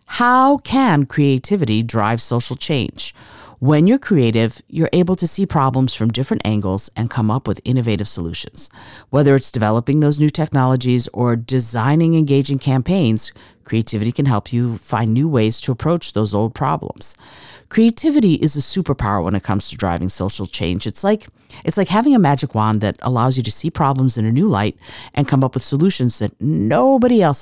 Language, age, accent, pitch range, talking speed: English, 40-59, American, 110-160 Hz, 175 wpm